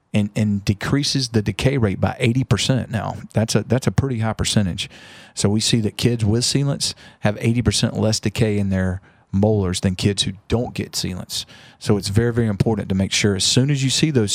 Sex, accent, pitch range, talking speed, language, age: male, American, 100-115 Hz, 220 wpm, English, 40-59